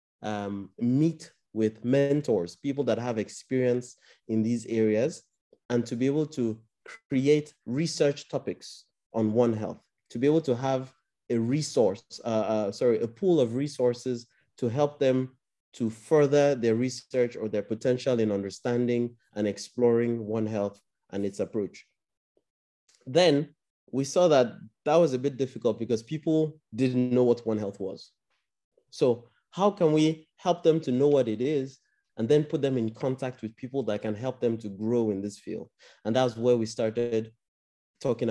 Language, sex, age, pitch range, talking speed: English, male, 30-49, 110-135 Hz, 165 wpm